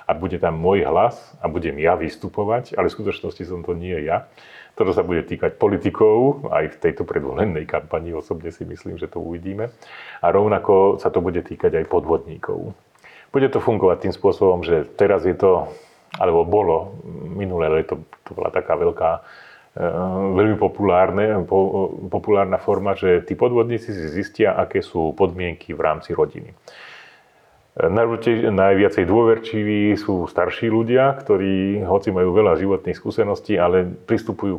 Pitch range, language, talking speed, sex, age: 90-115 Hz, Slovak, 145 wpm, male, 40-59